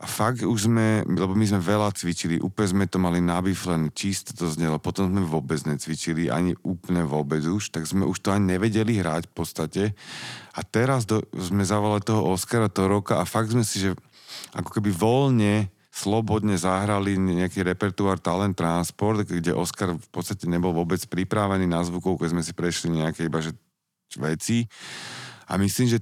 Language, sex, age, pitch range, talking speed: Slovak, male, 40-59, 90-105 Hz, 180 wpm